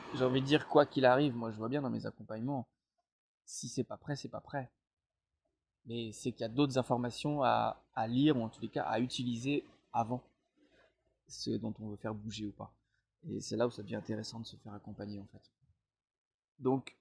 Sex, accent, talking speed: male, French, 215 wpm